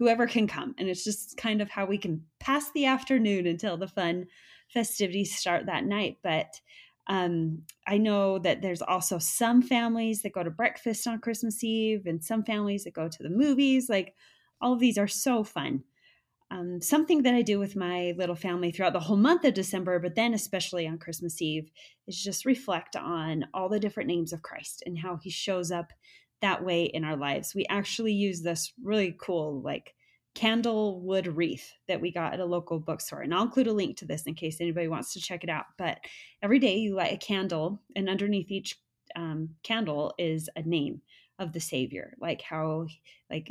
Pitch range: 170-220 Hz